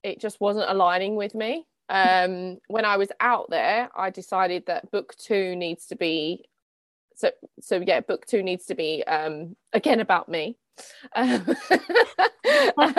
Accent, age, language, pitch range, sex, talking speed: British, 20-39, English, 175-220 Hz, female, 150 wpm